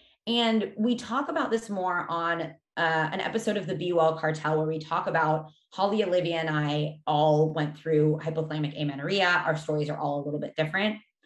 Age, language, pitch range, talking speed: 20-39, English, 155-185 Hz, 185 wpm